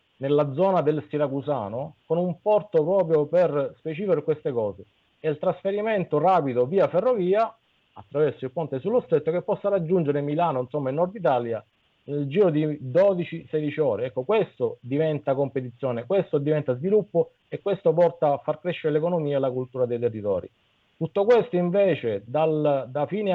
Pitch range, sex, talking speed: 135-175 Hz, male, 160 wpm